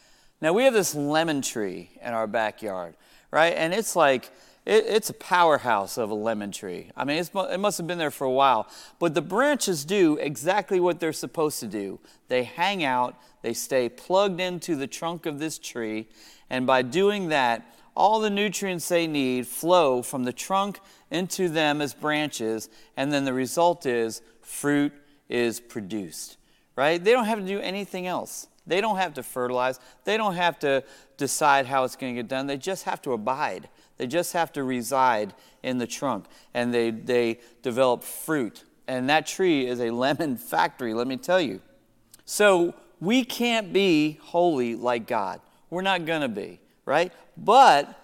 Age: 40-59